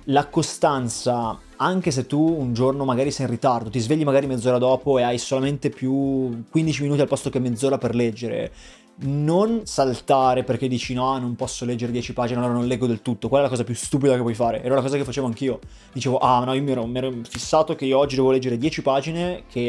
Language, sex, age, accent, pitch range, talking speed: Italian, male, 20-39, native, 125-150 Hz, 230 wpm